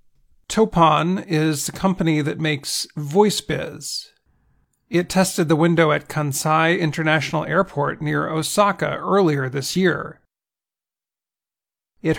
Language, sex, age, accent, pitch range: Chinese, male, 40-59, American, 145-175 Hz